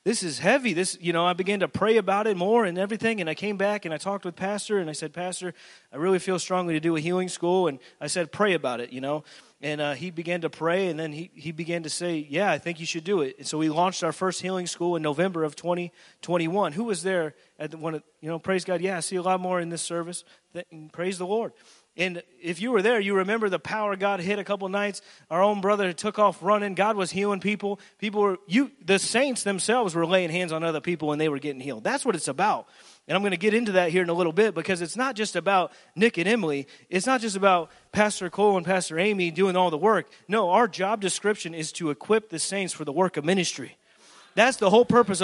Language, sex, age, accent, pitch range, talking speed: English, male, 30-49, American, 170-210 Hz, 265 wpm